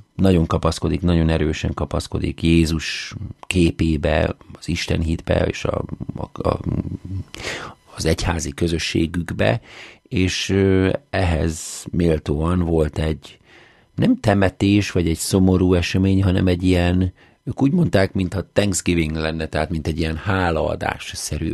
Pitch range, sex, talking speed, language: 80-95 Hz, male, 115 wpm, Hungarian